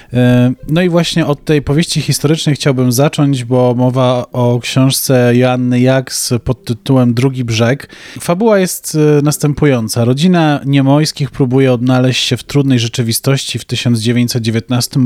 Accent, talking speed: native, 130 wpm